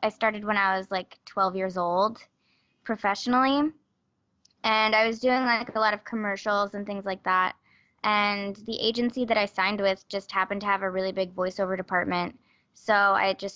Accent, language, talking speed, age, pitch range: American, English, 185 wpm, 10-29, 195-240 Hz